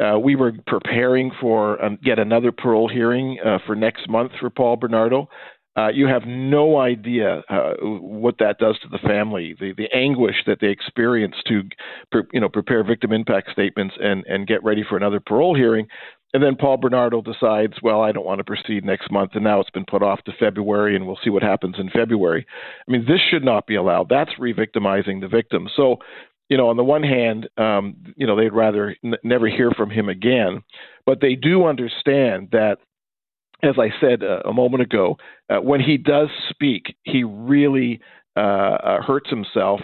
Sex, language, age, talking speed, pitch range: male, English, 50-69, 195 wpm, 105-130 Hz